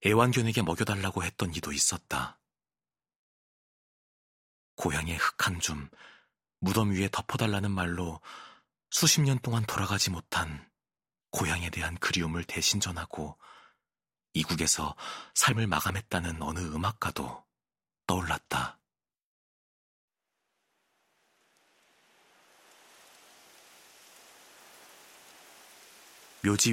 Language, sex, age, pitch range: Korean, male, 40-59, 85-105 Hz